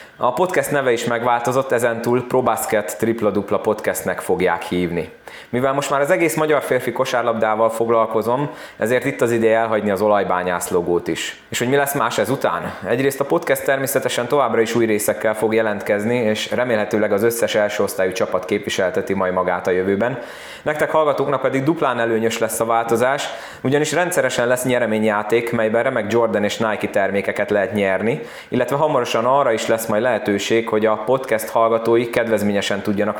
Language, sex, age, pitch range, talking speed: Hungarian, male, 20-39, 105-130 Hz, 165 wpm